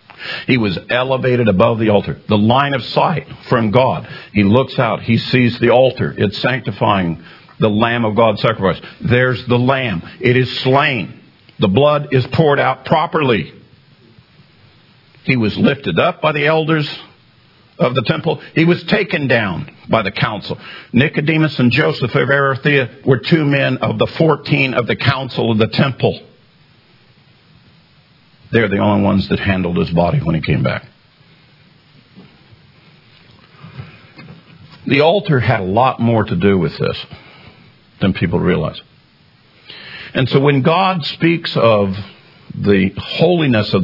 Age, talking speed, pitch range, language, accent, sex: 50-69, 145 wpm, 110-145 Hz, English, American, male